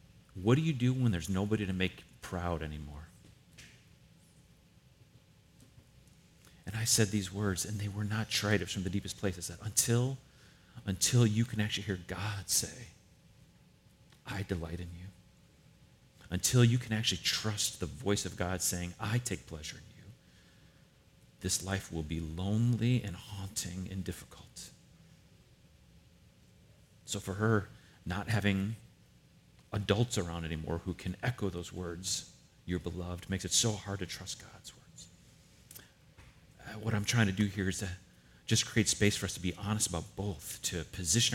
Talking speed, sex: 155 wpm, male